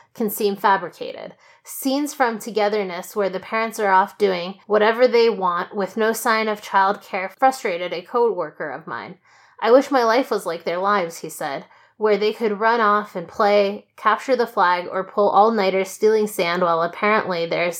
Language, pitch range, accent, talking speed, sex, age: English, 180-225 Hz, American, 185 wpm, female, 20-39